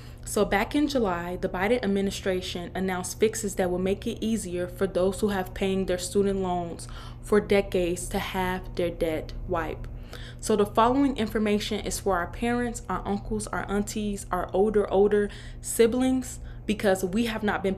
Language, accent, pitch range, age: English, American, 190-235 Hz, 20-39